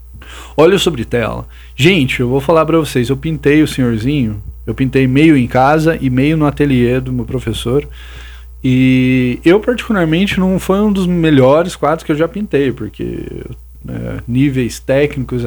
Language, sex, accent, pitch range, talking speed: Portuguese, male, Brazilian, 120-165 Hz, 165 wpm